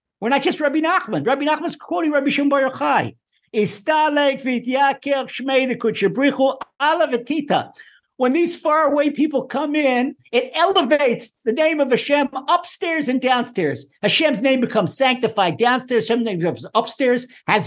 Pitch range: 185-285 Hz